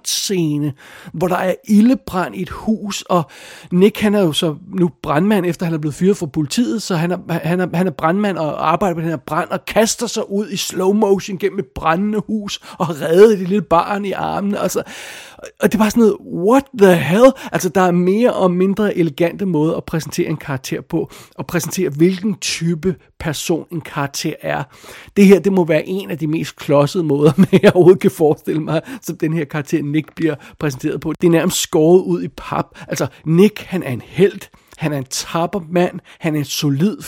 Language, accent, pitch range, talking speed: Danish, native, 155-195 Hz, 215 wpm